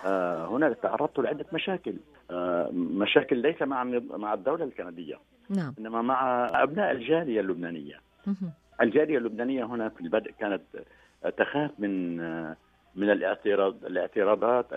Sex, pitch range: male, 95-145 Hz